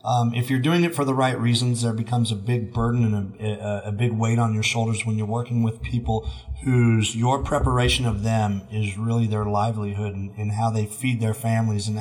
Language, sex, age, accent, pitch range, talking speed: English, male, 30-49, American, 105-115 Hz, 225 wpm